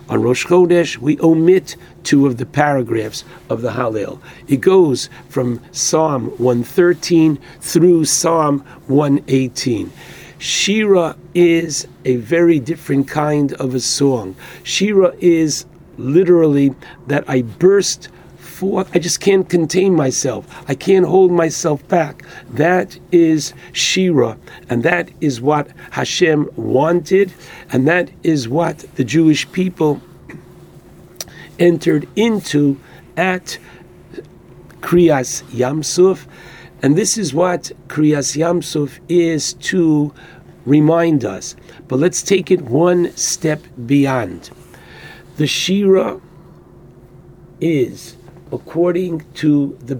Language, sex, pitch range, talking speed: English, male, 135-175 Hz, 105 wpm